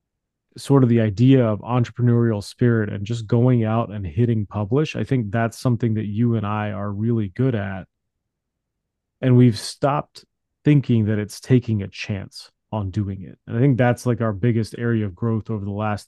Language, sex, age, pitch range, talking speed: English, male, 30-49, 105-120 Hz, 190 wpm